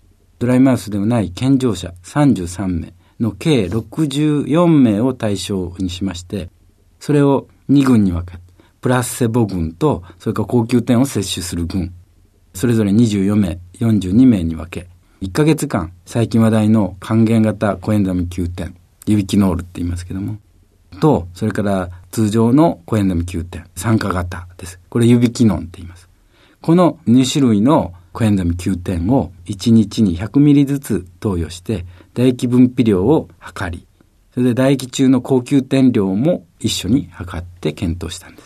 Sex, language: male, Japanese